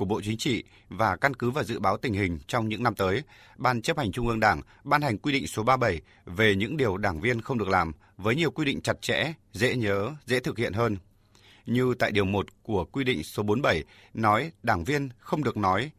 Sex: male